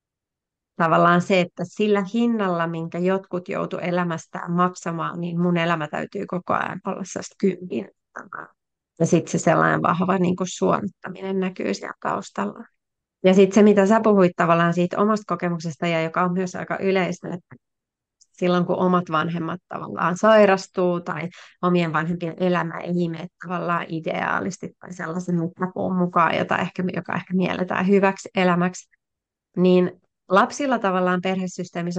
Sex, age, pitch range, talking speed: female, 30-49, 175-195 Hz, 135 wpm